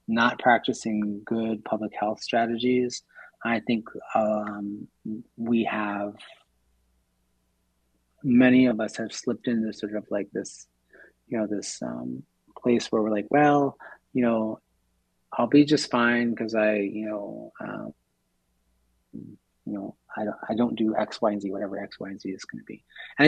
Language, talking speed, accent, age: English, 155 wpm, American, 30-49